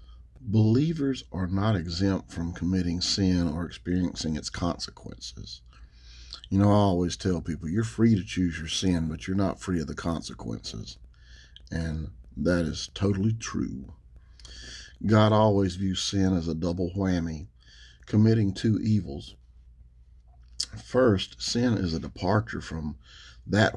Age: 50-69